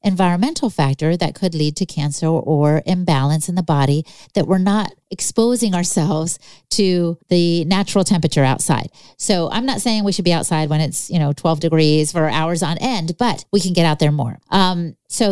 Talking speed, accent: 190 wpm, American